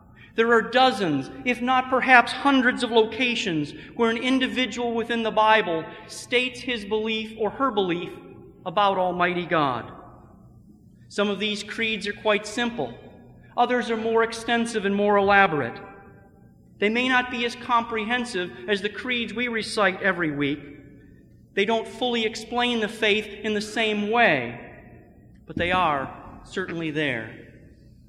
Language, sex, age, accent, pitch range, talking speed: English, male, 40-59, American, 180-235 Hz, 140 wpm